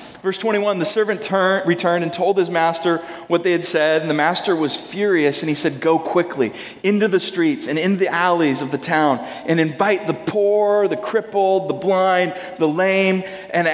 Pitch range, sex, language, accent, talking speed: 155-205 Hz, male, English, American, 195 wpm